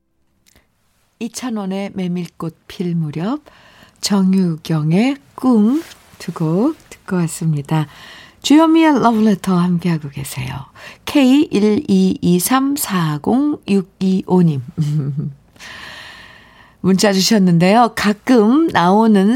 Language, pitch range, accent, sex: Korean, 170-245 Hz, native, female